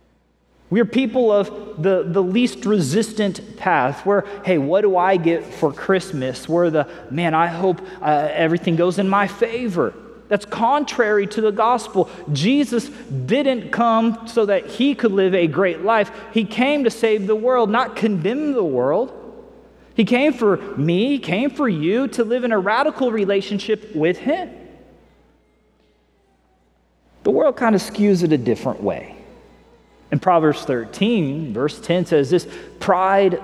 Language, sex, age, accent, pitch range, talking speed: English, male, 30-49, American, 155-220 Hz, 155 wpm